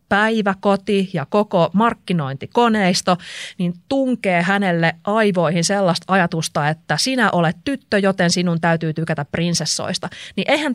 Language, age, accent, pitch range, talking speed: Finnish, 30-49, native, 160-215 Hz, 115 wpm